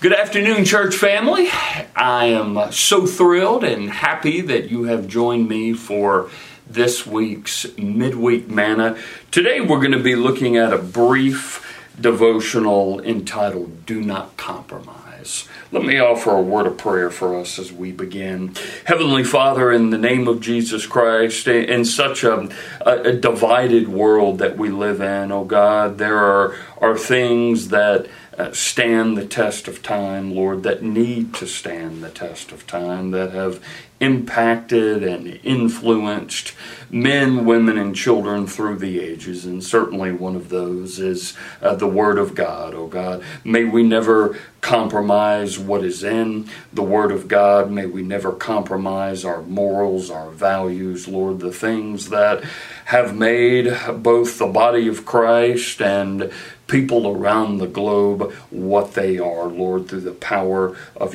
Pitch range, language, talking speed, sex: 95-120 Hz, English, 150 wpm, male